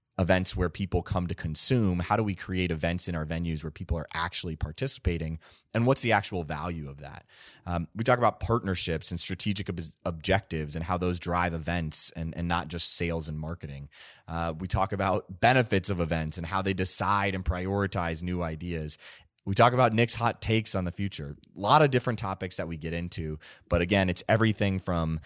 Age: 30-49